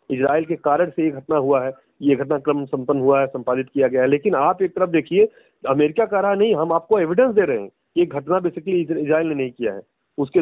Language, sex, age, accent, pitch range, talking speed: Hindi, male, 40-59, native, 140-180 Hz, 250 wpm